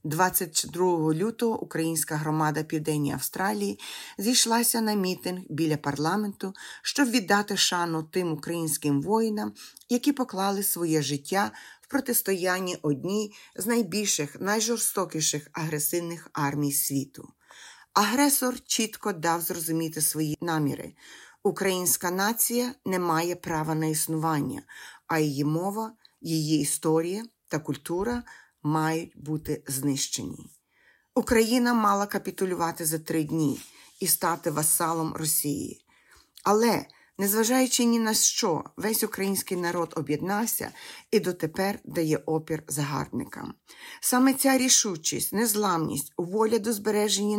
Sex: female